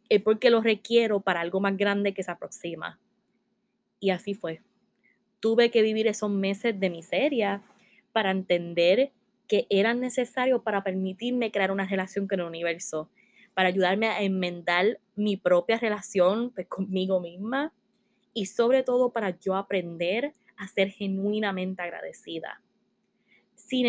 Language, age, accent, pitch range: Spanish, 20-39, American, 190-225 Hz